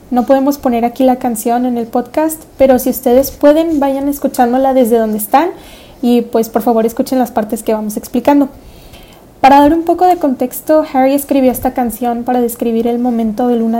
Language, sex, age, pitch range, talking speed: English, female, 20-39, 235-280 Hz, 190 wpm